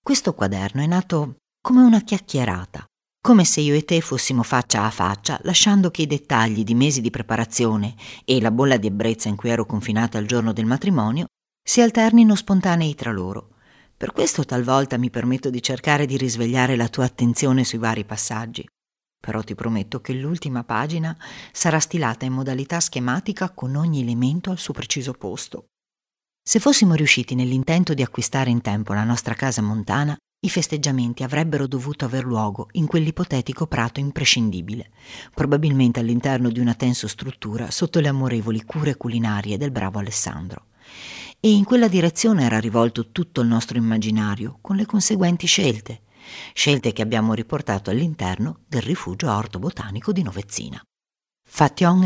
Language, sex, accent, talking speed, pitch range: Italian, female, native, 160 wpm, 115-155 Hz